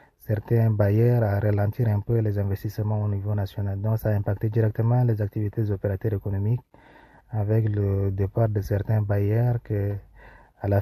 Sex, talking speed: male, 160 wpm